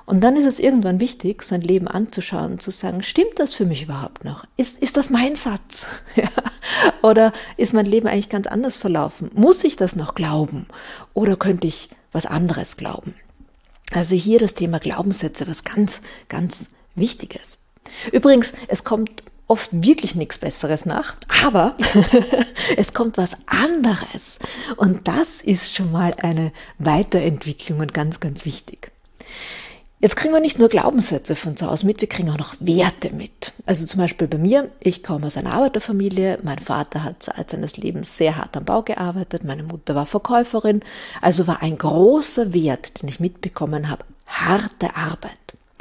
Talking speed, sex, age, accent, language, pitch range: 165 wpm, female, 50-69, German, German, 165-230 Hz